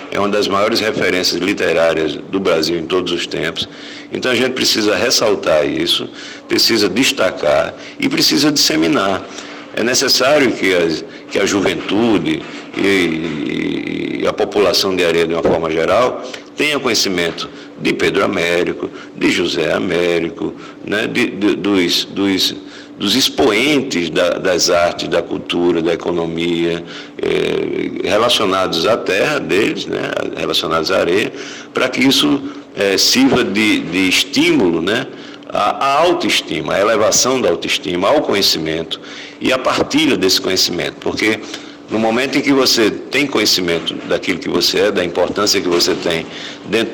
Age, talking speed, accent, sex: 60-79, 140 wpm, Brazilian, male